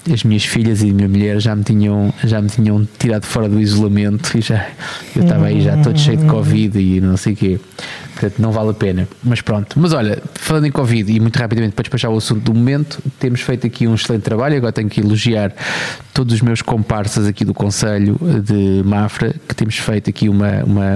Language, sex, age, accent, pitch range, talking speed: Portuguese, male, 20-39, Portuguese, 105-125 Hz, 225 wpm